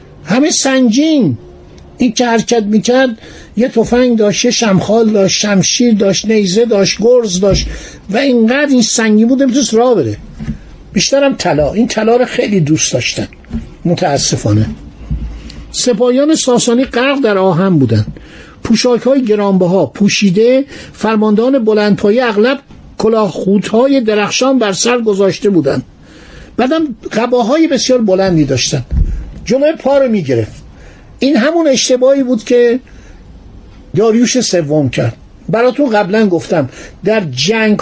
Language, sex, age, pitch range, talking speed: Persian, male, 50-69, 175-250 Hz, 120 wpm